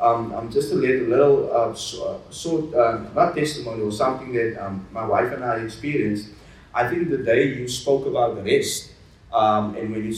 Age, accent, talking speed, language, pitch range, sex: 30-49, South African, 210 wpm, English, 115-155 Hz, male